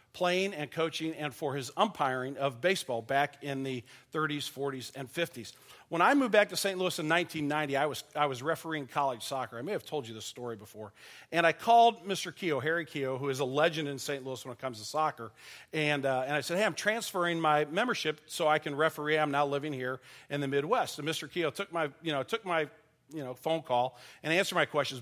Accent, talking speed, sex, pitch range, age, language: American, 235 wpm, male, 135-165 Hz, 40-59, English